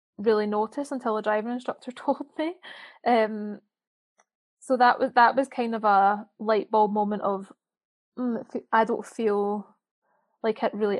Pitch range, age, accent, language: 215-245 Hz, 10-29, British, English